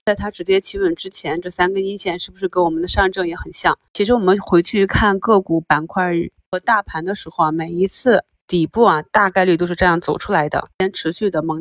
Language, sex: Chinese, female